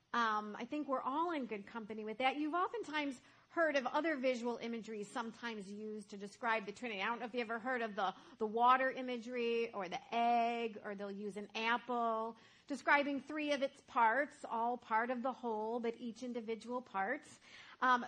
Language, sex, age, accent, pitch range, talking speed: English, female, 40-59, American, 225-280 Hz, 195 wpm